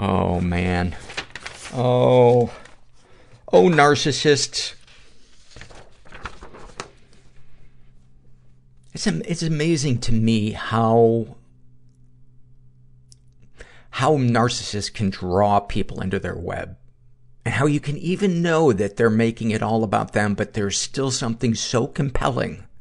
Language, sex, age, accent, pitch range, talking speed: English, male, 50-69, American, 100-125 Hz, 95 wpm